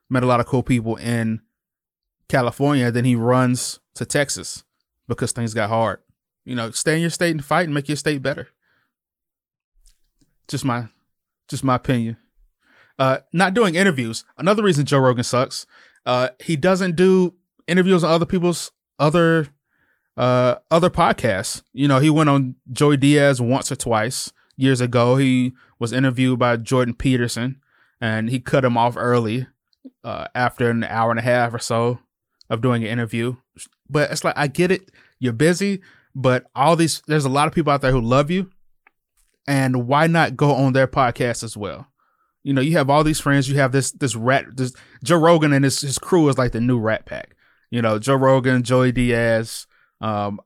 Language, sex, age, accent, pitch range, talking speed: English, male, 20-39, American, 120-150 Hz, 185 wpm